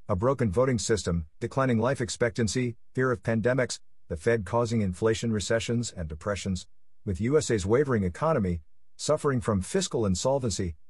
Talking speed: 140 wpm